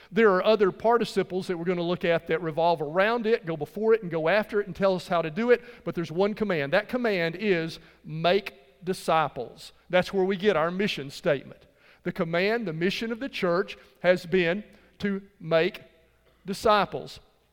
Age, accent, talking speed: 50-69, American, 190 wpm